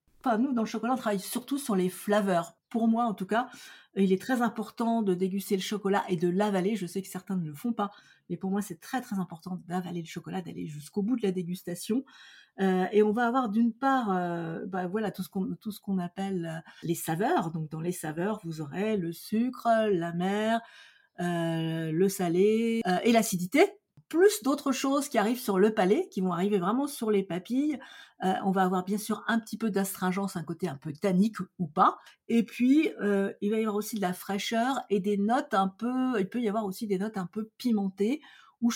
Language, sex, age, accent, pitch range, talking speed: French, female, 50-69, French, 185-230 Hz, 225 wpm